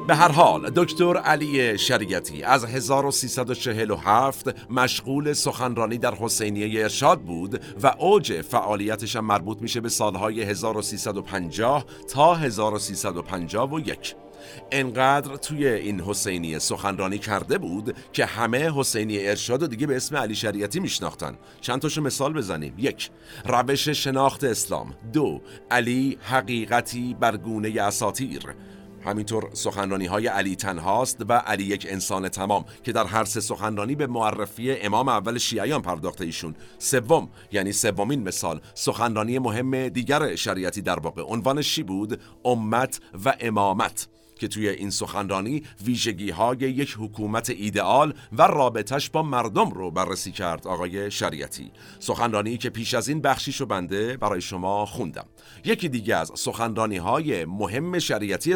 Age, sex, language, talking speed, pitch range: 50-69, male, Persian, 130 wpm, 100-130 Hz